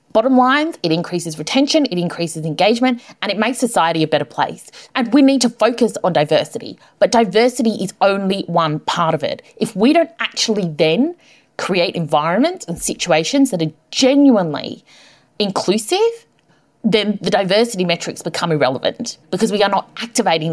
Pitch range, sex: 170-250 Hz, female